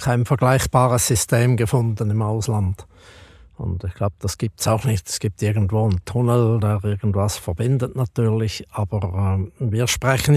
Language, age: German, 60-79